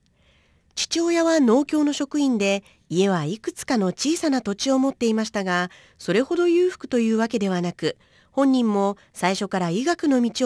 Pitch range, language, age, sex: 180-270 Hz, Japanese, 40-59, female